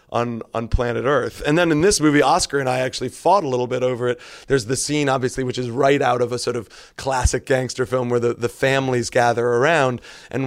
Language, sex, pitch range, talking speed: English, male, 115-130 Hz, 235 wpm